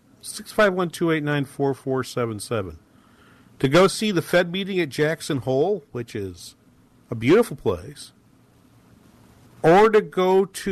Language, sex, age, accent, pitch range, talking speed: English, male, 50-69, American, 115-170 Hz, 155 wpm